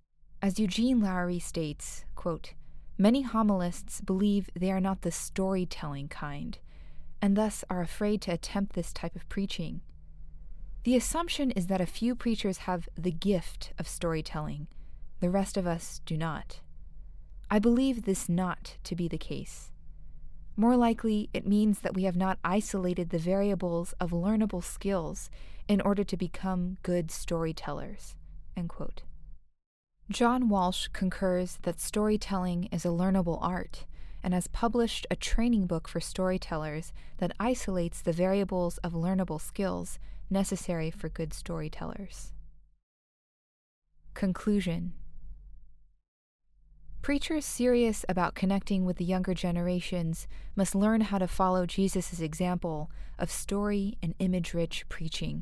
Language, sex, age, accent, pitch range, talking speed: English, female, 20-39, American, 160-195 Hz, 130 wpm